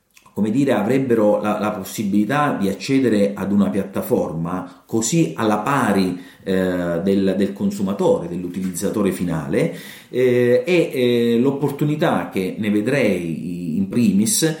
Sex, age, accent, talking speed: male, 40-59, native, 115 wpm